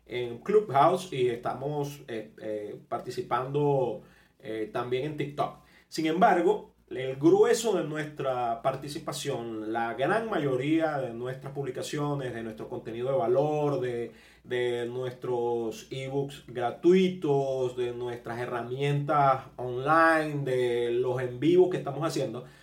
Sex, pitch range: male, 120-165 Hz